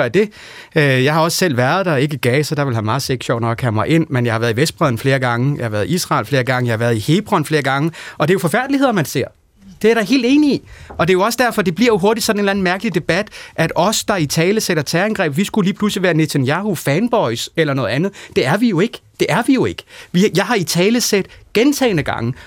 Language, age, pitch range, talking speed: Danish, 30-49, 155-215 Hz, 275 wpm